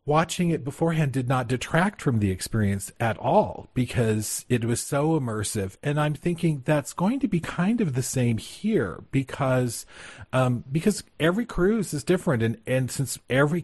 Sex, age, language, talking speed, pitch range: male, 40-59, English, 170 wpm, 115-155 Hz